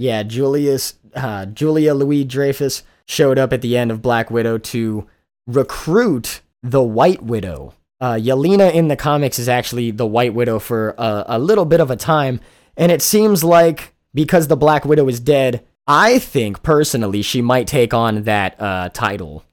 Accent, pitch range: American, 105-150 Hz